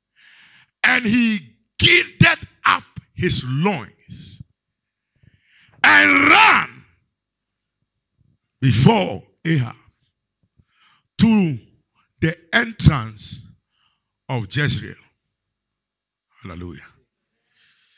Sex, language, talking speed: male, English, 55 wpm